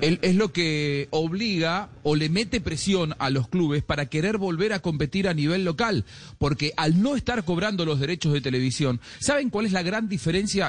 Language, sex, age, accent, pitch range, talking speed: Spanish, male, 40-59, Argentinian, 150-205 Hz, 190 wpm